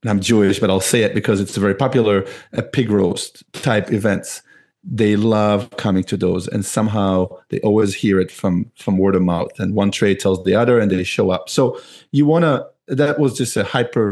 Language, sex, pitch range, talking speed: English, male, 100-125 Hz, 215 wpm